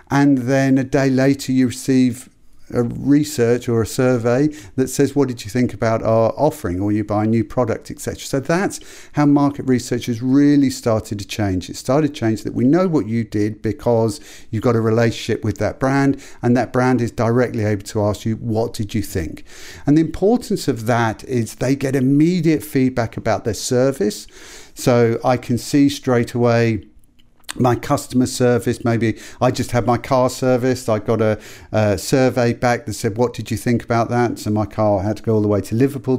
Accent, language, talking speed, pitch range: British, English, 205 wpm, 115-135 Hz